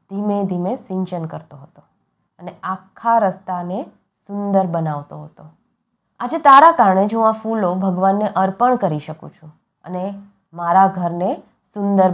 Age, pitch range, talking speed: 20-39, 170-210 Hz, 135 wpm